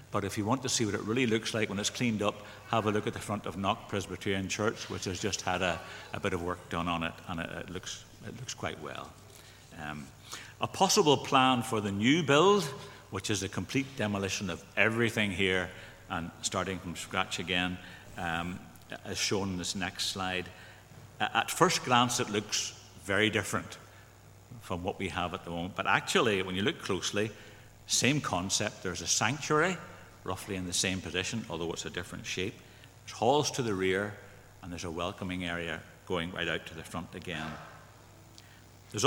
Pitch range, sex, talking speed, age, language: 95-120 Hz, male, 195 wpm, 60-79, English